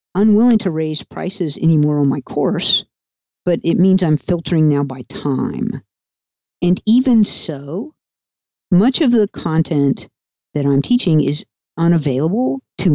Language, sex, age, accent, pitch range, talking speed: English, female, 50-69, American, 145-200 Hz, 135 wpm